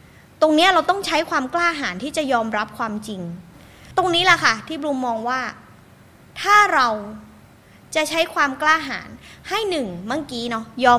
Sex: female